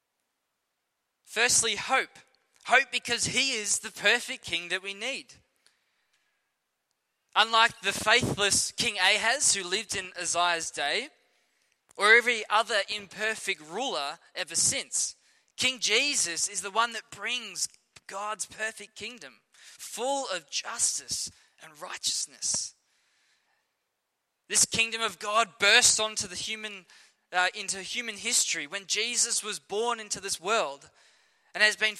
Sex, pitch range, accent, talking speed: male, 195-230 Hz, Australian, 120 wpm